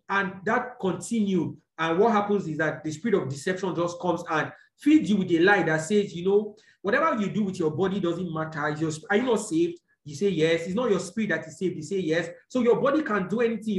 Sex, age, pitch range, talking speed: male, 40-59, 165-210 Hz, 245 wpm